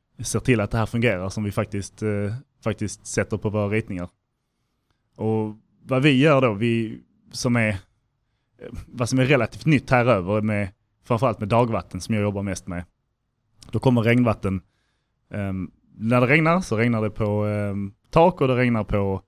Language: Swedish